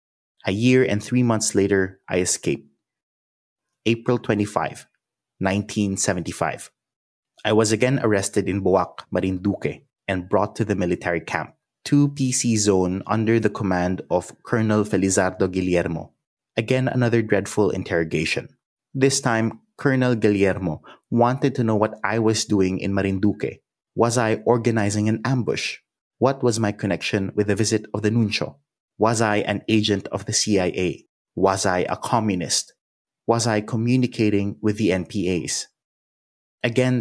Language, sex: English, male